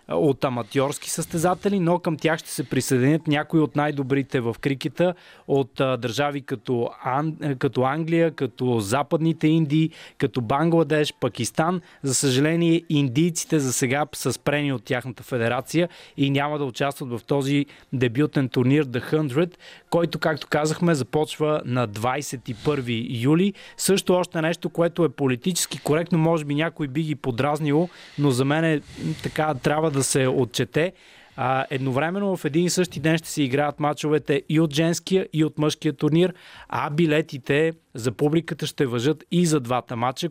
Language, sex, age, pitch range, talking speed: Bulgarian, male, 20-39, 135-165 Hz, 155 wpm